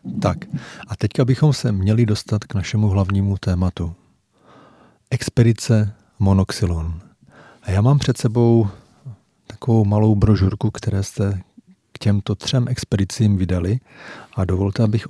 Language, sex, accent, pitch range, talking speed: Czech, male, native, 100-115 Hz, 125 wpm